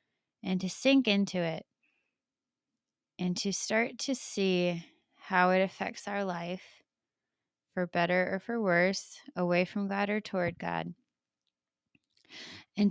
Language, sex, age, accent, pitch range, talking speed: English, female, 20-39, American, 165-190 Hz, 125 wpm